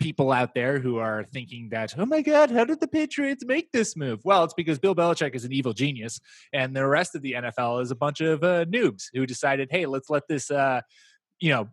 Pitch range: 130-170 Hz